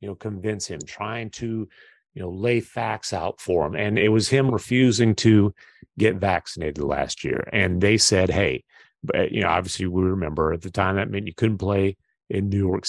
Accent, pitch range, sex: American, 95-120 Hz, male